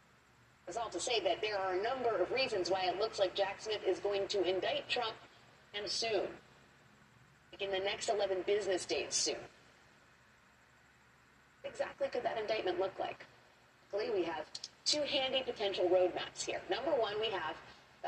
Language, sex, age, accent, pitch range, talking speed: English, female, 40-59, American, 175-225 Hz, 170 wpm